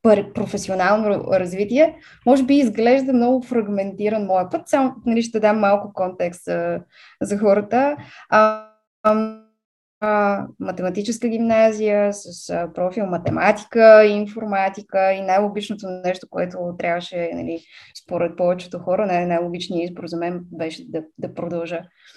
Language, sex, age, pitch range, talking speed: Bulgarian, female, 20-39, 180-225 Hz, 120 wpm